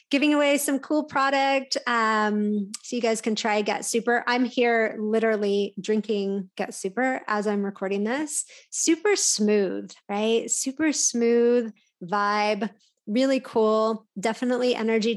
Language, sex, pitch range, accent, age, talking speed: English, female, 210-245 Hz, American, 30-49, 130 wpm